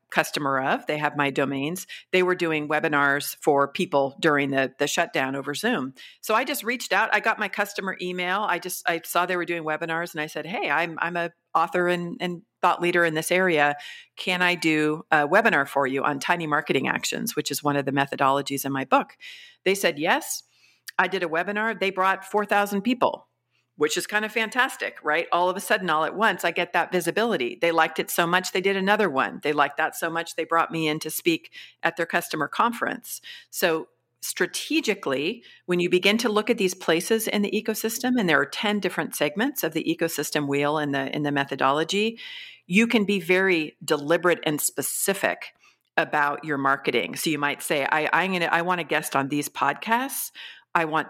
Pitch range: 150-195 Hz